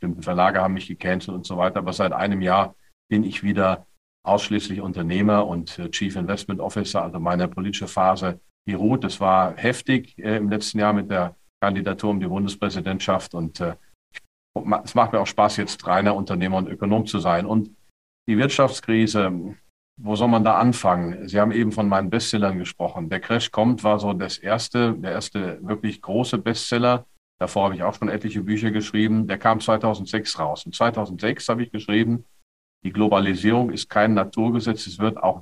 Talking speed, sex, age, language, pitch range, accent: 180 wpm, male, 40-59, German, 95-110 Hz, German